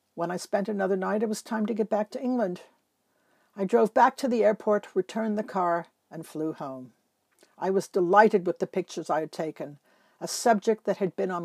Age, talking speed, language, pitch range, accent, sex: 60-79, 210 wpm, English, 175-230 Hz, American, female